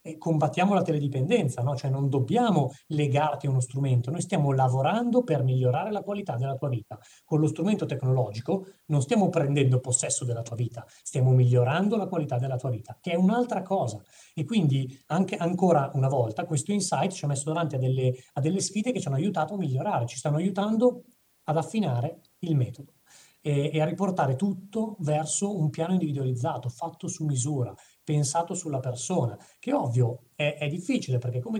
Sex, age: male, 30-49